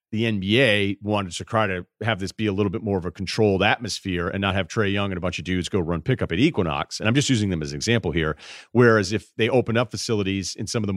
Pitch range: 95-125 Hz